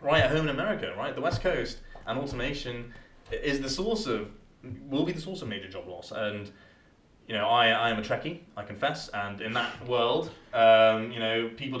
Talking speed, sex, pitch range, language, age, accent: 210 wpm, male, 110-135 Hz, English, 20-39, British